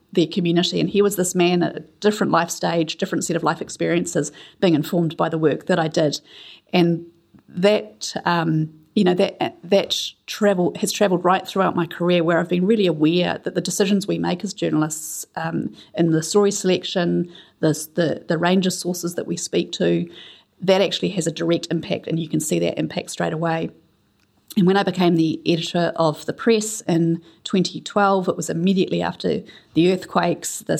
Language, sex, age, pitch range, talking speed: English, female, 30-49, 165-185 Hz, 190 wpm